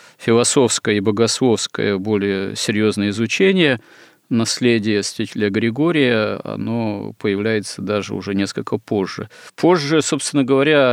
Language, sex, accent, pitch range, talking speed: Russian, male, native, 105-125 Hz, 100 wpm